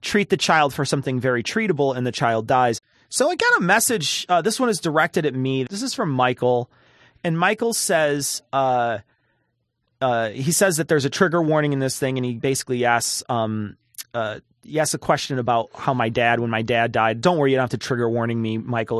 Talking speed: 220 wpm